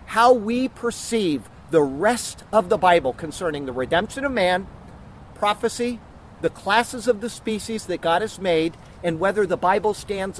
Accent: American